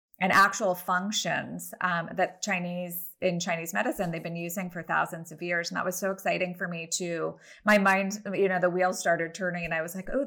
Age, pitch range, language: 20-39, 170-195 Hz, English